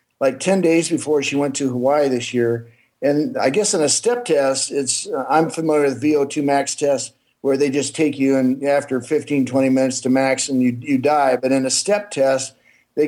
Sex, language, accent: male, English, American